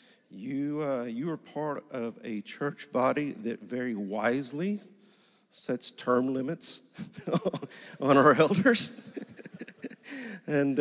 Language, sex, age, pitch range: English, male, 50-69, 105-155 Hz